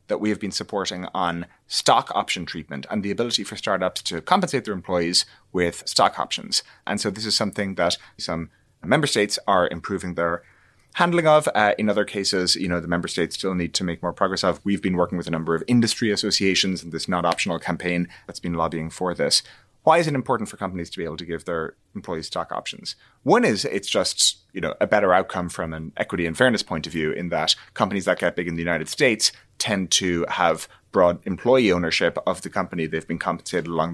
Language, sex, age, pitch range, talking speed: English, male, 30-49, 85-105 Hz, 225 wpm